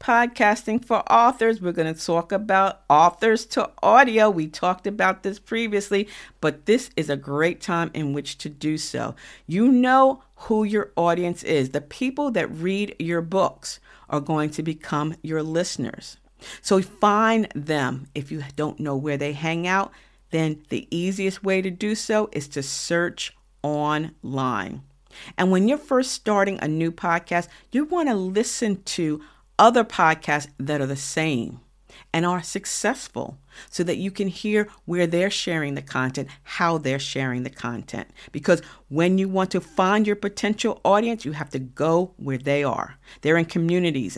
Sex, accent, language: female, American, English